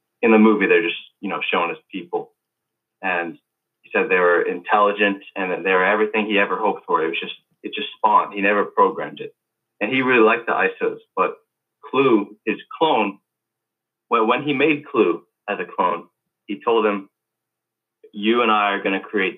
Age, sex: 30-49, male